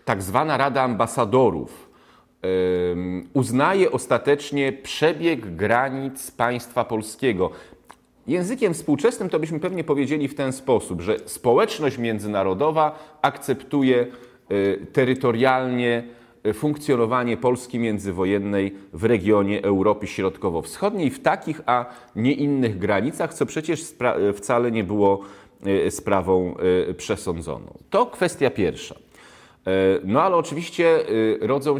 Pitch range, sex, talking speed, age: 100-135 Hz, male, 95 wpm, 30-49